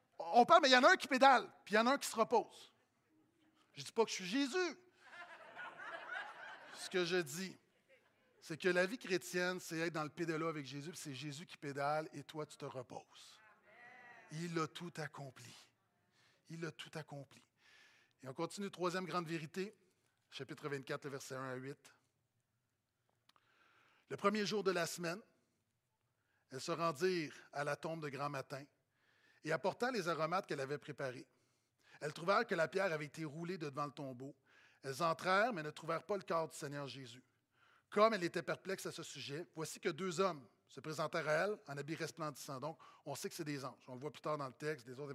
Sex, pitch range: male, 140-190 Hz